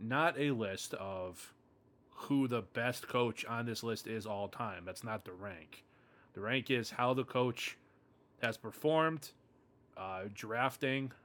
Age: 20-39